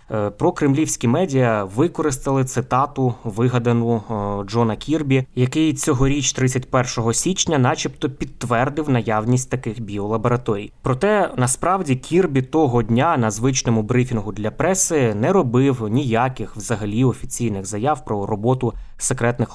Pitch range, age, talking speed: 110-135 Hz, 20-39, 110 wpm